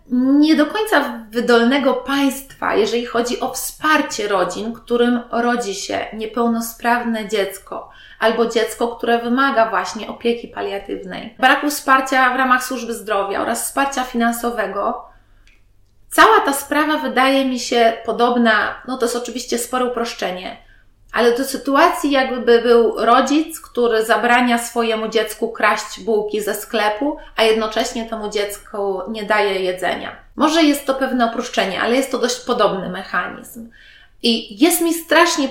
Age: 30-49